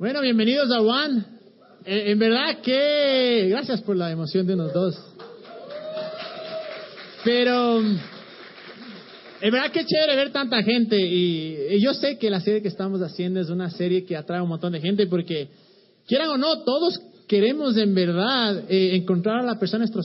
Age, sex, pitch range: 30-49, male, 185-230 Hz